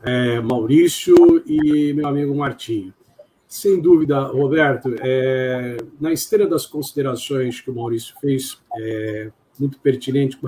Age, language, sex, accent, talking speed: 50-69, Portuguese, male, Brazilian, 125 wpm